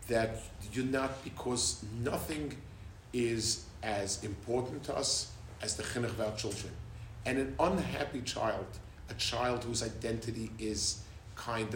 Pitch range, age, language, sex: 105-135 Hz, 50-69, English, male